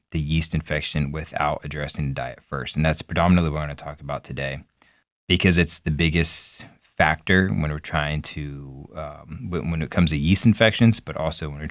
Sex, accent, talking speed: male, American, 200 wpm